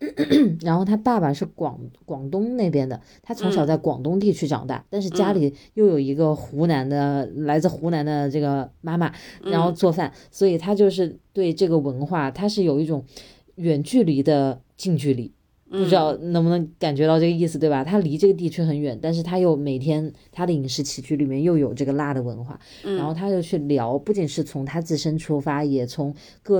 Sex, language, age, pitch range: female, Chinese, 20-39, 140-175 Hz